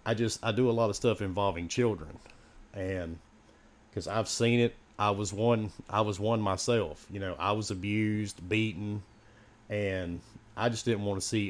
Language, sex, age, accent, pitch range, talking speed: English, male, 40-59, American, 95-115 Hz, 185 wpm